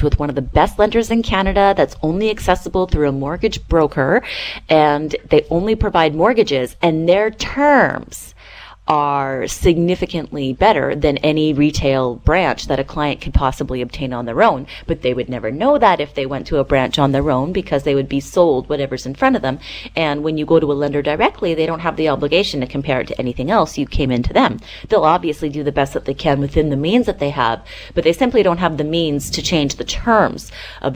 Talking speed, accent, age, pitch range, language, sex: 220 wpm, American, 30-49, 135-175 Hz, English, female